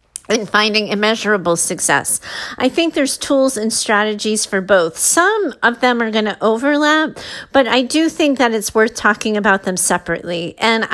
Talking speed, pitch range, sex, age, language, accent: 170 wpm, 210-260 Hz, female, 40-59, English, American